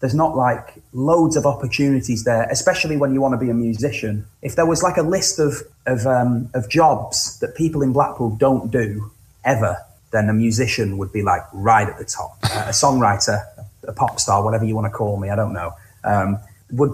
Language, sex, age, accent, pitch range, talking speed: German, male, 30-49, British, 105-135 Hz, 215 wpm